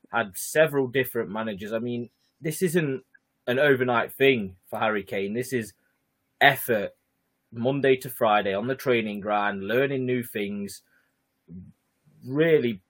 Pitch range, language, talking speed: 105-130 Hz, English, 130 wpm